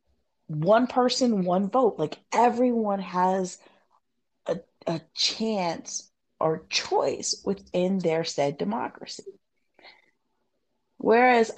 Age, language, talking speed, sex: 30-49, English, 90 wpm, female